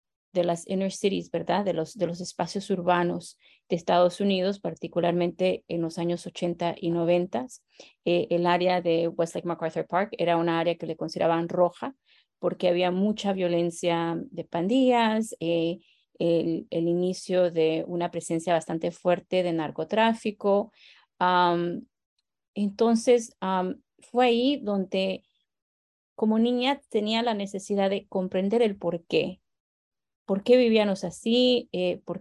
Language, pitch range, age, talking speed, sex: English, 175-220 Hz, 30-49, 135 wpm, female